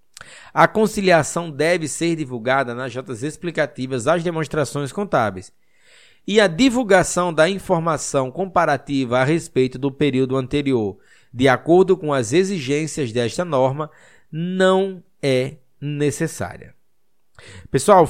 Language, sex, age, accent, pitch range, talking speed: Portuguese, male, 20-39, Brazilian, 130-170 Hz, 110 wpm